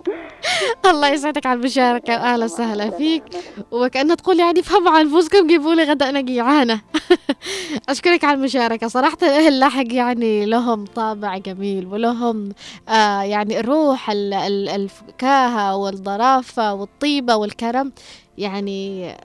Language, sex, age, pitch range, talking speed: Arabic, female, 20-39, 205-270 Hz, 110 wpm